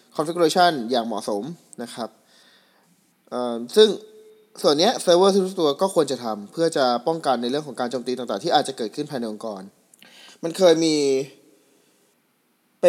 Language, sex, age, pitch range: Thai, male, 20-39, 125-165 Hz